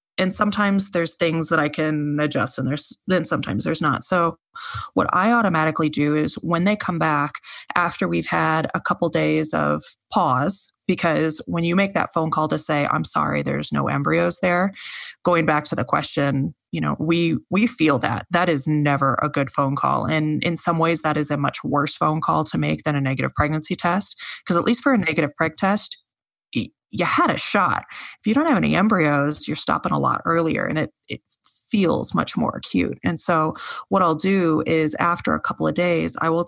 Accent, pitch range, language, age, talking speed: American, 150-175 Hz, English, 20-39, 205 wpm